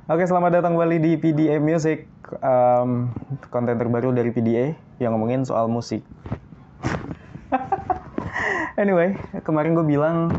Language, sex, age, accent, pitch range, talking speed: Indonesian, male, 20-39, native, 110-135 Hz, 115 wpm